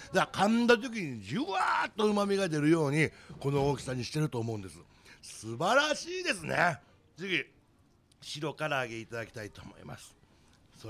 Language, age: Japanese, 60-79